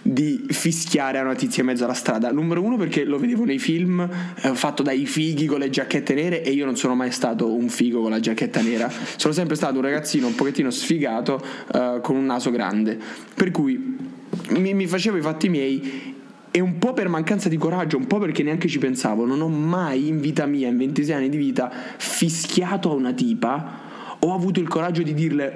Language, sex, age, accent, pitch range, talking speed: Italian, male, 20-39, native, 135-180 Hz, 210 wpm